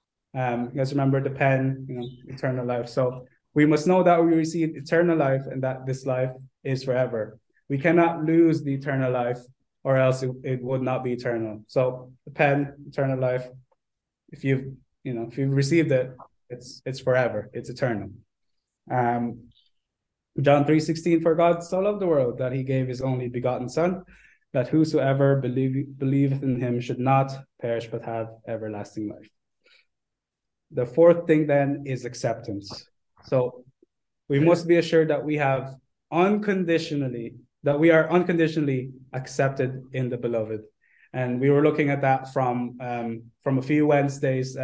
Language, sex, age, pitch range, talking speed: English, male, 20-39, 125-145 Hz, 165 wpm